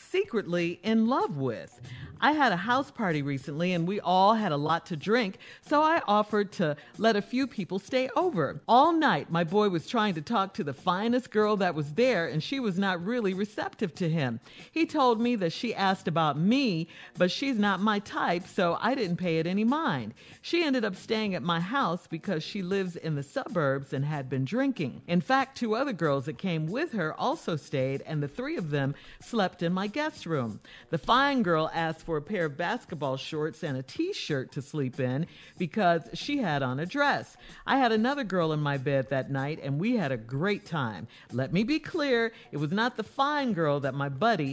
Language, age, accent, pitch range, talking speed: English, 50-69, American, 155-230 Hz, 215 wpm